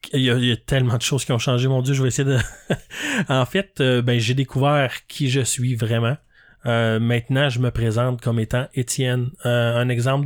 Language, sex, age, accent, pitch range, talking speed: French, male, 30-49, Canadian, 115-130 Hz, 230 wpm